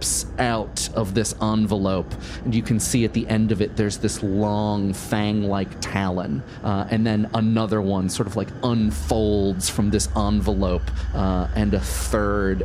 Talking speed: 160 wpm